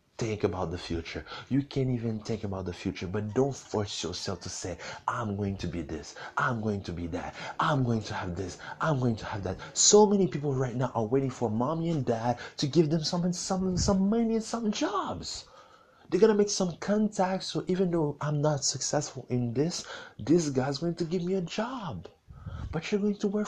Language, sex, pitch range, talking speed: English, male, 105-170 Hz, 215 wpm